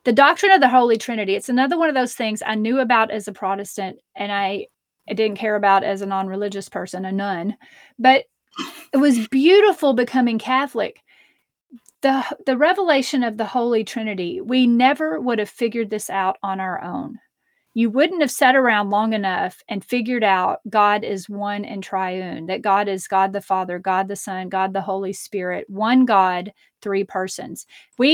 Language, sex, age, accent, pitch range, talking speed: English, female, 30-49, American, 200-255 Hz, 185 wpm